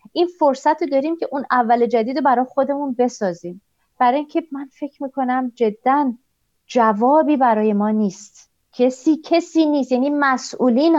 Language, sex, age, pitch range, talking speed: Persian, female, 30-49, 200-255 Hz, 145 wpm